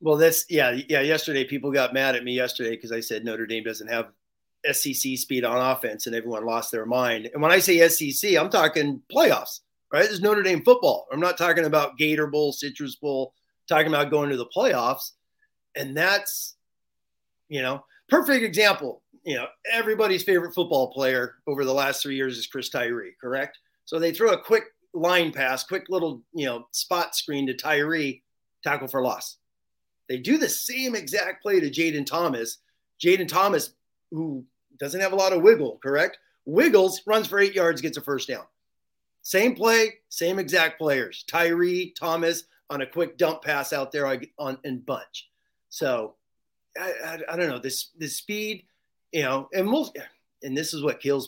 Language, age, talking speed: English, 30-49, 185 wpm